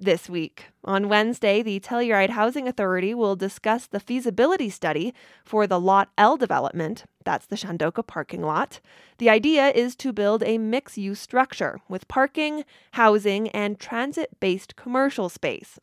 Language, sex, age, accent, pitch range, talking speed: English, female, 20-39, American, 195-250 Hz, 145 wpm